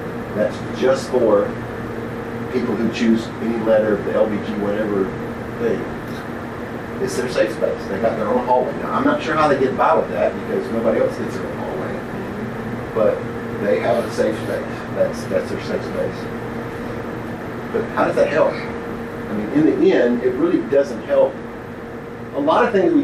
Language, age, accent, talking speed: English, 50-69, American, 175 wpm